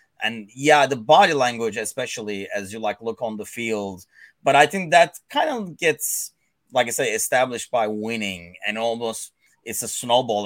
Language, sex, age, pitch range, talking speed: English, male, 30-49, 110-145 Hz, 180 wpm